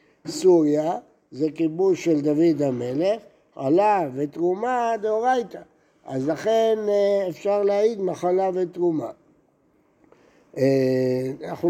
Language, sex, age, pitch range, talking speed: Hebrew, male, 60-79, 145-200 Hz, 80 wpm